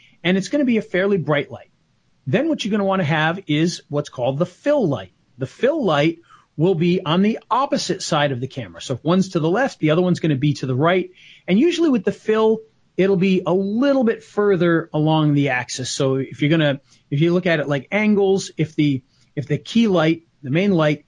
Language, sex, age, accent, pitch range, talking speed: English, male, 40-59, American, 140-185 Hz, 240 wpm